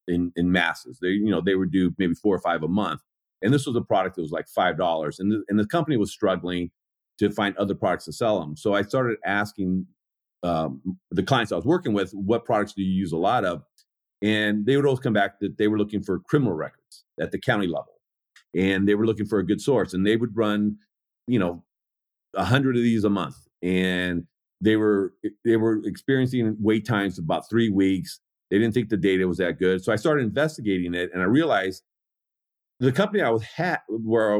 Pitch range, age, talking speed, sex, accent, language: 95-120 Hz, 40-59, 225 wpm, male, American, English